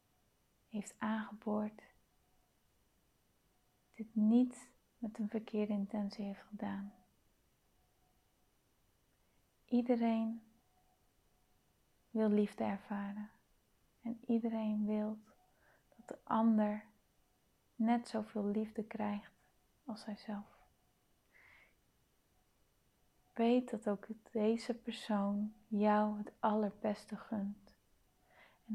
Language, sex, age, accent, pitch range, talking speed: Dutch, female, 30-49, Dutch, 210-230 Hz, 75 wpm